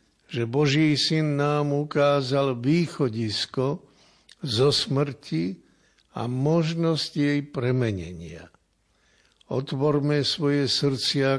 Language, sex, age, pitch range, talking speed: Slovak, male, 60-79, 110-140 Hz, 80 wpm